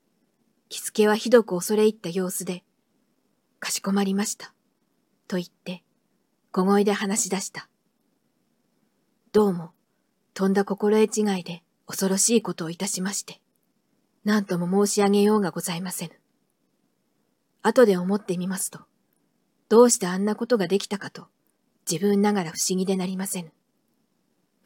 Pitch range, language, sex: 185-225 Hz, Japanese, female